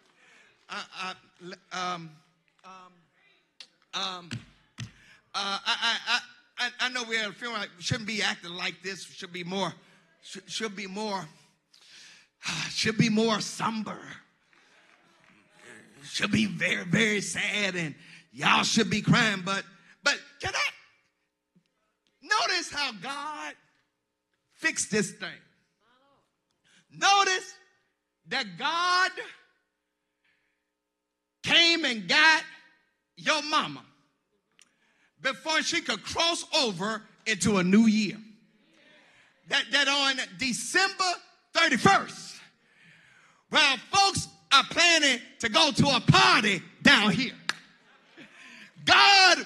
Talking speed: 105 wpm